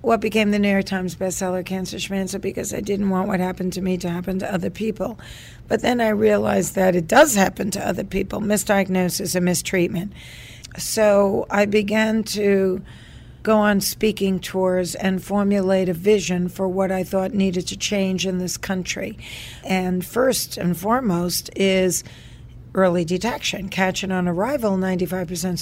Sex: female